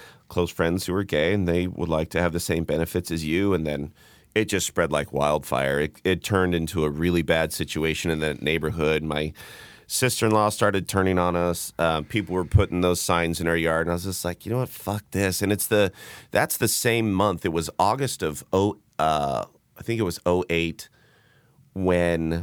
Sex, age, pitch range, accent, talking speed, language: male, 40-59, 80-100 Hz, American, 205 wpm, English